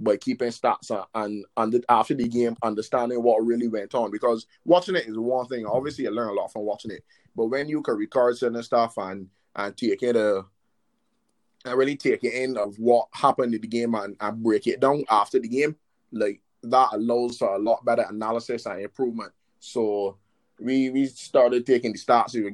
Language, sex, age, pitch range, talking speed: English, male, 20-39, 110-130 Hz, 200 wpm